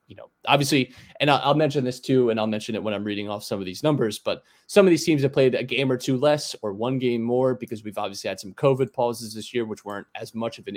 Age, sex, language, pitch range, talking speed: 20-39, male, English, 110-130 Hz, 285 wpm